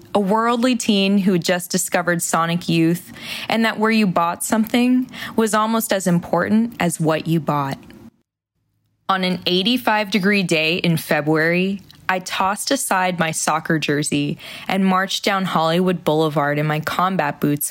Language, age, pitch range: English, 20-39, 165-215 Hz